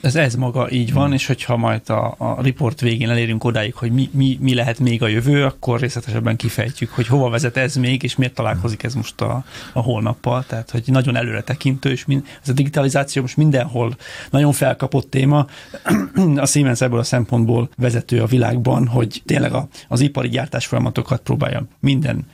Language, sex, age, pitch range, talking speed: Hungarian, male, 30-49, 120-140 Hz, 185 wpm